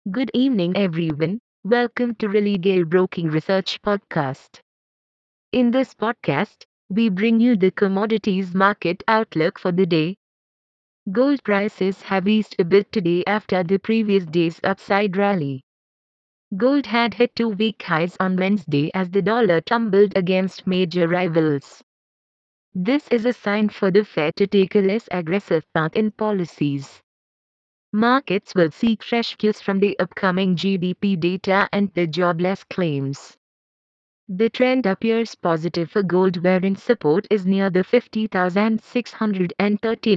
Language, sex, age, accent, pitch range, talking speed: English, female, 30-49, Indian, 180-215 Hz, 135 wpm